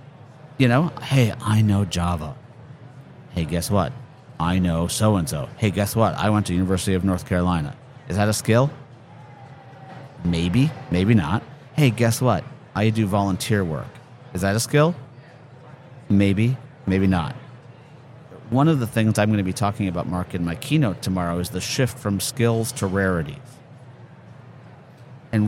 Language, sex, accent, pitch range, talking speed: English, male, American, 105-135 Hz, 155 wpm